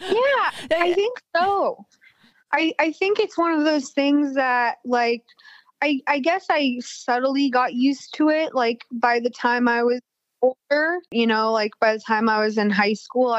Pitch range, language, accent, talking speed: 210-265 Hz, English, American, 185 wpm